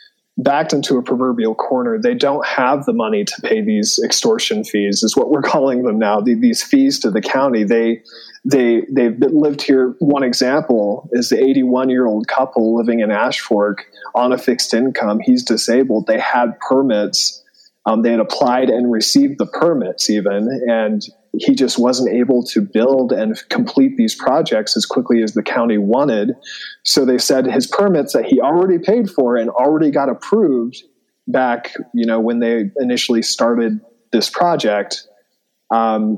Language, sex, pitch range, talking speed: English, male, 115-150 Hz, 170 wpm